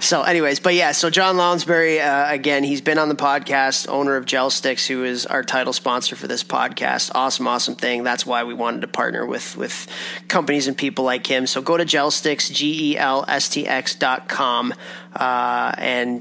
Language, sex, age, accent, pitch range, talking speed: English, male, 30-49, American, 130-165 Hz, 180 wpm